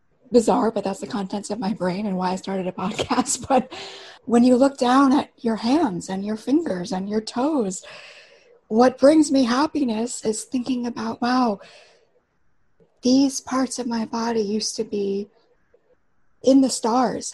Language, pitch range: English, 190-255 Hz